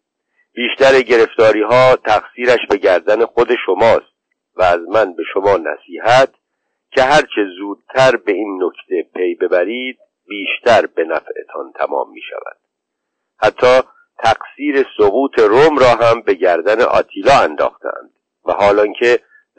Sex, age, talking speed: male, 50-69, 125 wpm